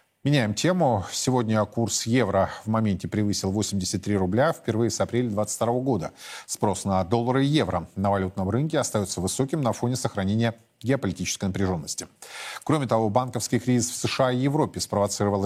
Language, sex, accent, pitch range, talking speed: Russian, male, native, 100-120 Hz, 150 wpm